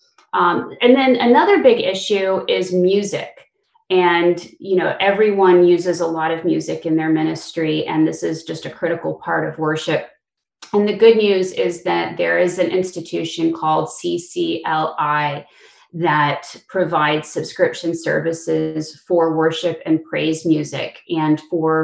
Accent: American